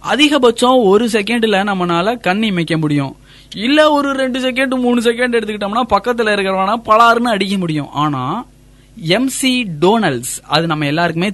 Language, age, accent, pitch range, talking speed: Tamil, 20-39, native, 160-225 Hz, 130 wpm